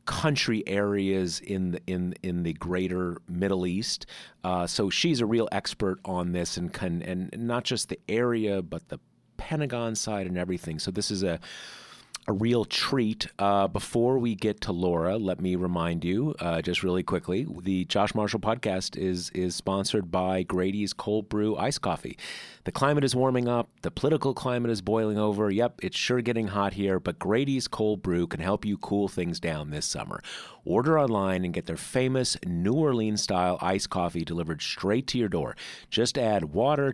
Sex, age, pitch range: male, 30-49, 90-125 Hz